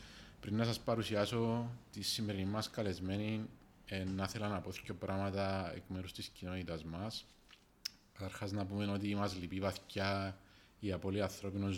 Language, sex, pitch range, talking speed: Greek, male, 95-105 Hz, 155 wpm